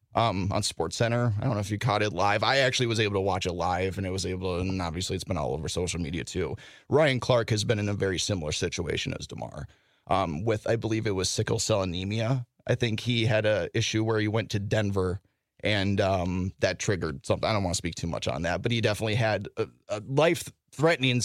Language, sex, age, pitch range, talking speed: English, male, 30-49, 100-125 Hz, 240 wpm